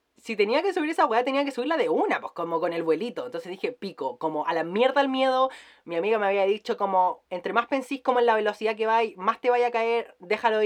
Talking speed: 260 wpm